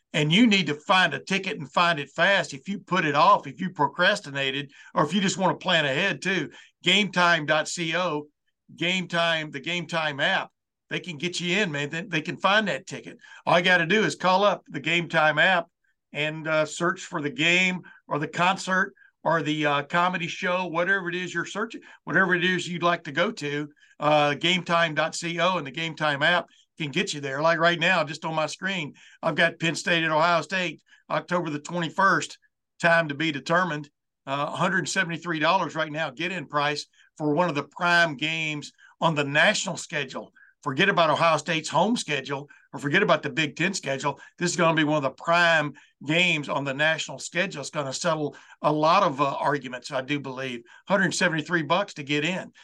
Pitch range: 150-180 Hz